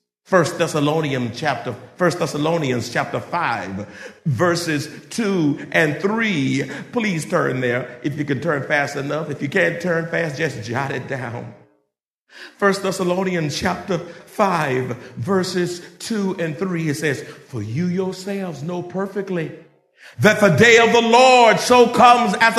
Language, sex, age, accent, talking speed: English, male, 50-69, American, 135 wpm